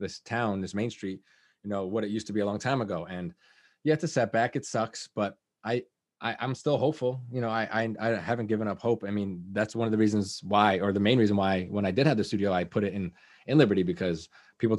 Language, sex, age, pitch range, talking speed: English, male, 20-39, 100-120 Hz, 270 wpm